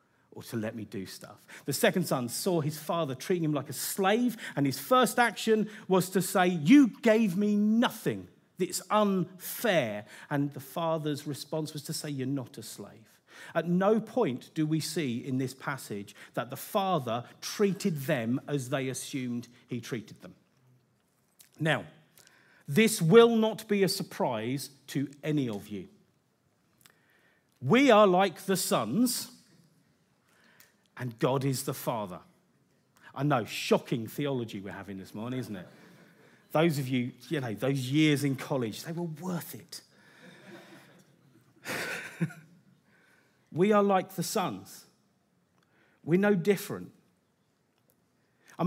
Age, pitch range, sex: 40-59, 130-185 Hz, male